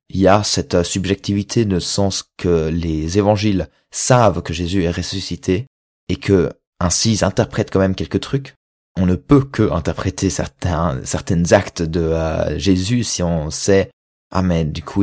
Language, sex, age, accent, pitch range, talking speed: French, male, 20-39, French, 85-105 Hz, 170 wpm